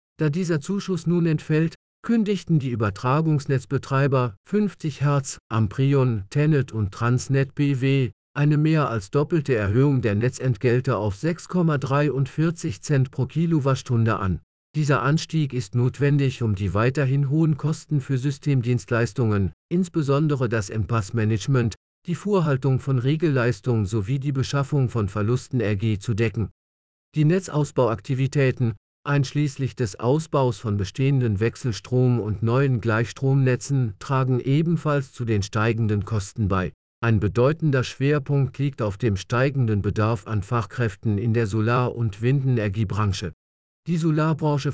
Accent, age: German, 50-69